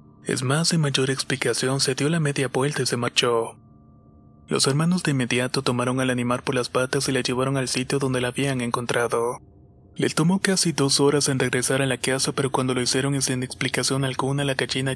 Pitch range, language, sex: 125-140 Hz, Spanish, male